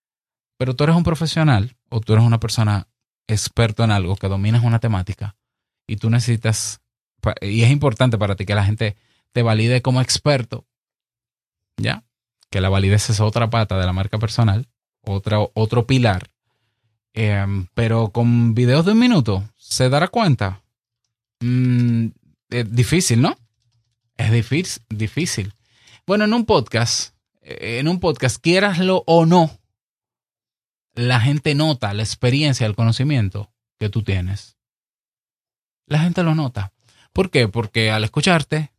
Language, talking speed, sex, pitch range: Spanish, 140 wpm, male, 110-130 Hz